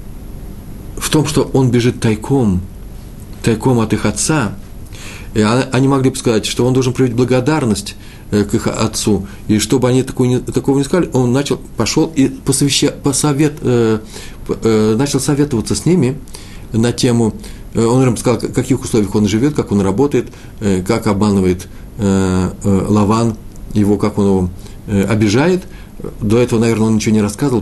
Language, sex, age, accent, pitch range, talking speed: Russian, male, 40-59, native, 100-125 Hz, 150 wpm